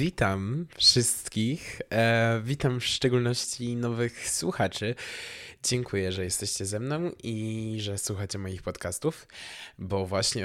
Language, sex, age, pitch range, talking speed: Polish, male, 20-39, 105-130 Hz, 115 wpm